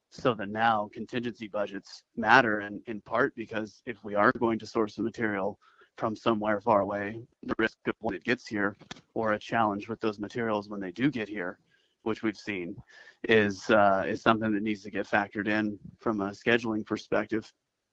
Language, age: English, 30-49